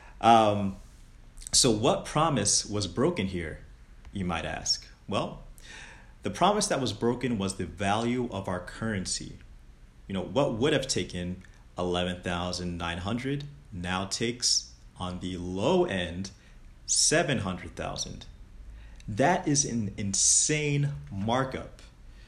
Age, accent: 30-49, American